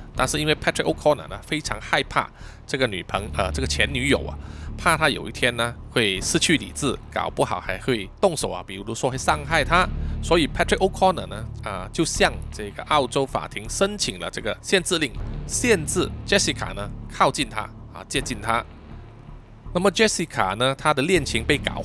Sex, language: male, Chinese